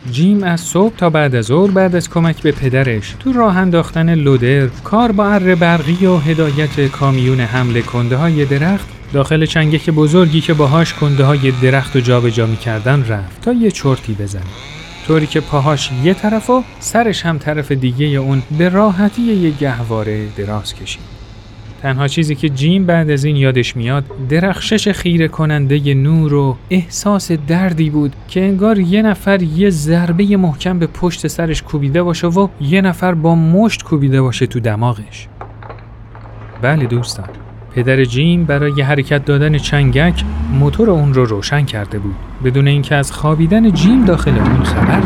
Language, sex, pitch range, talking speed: Persian, male, 125-170 Hz, 165 wpm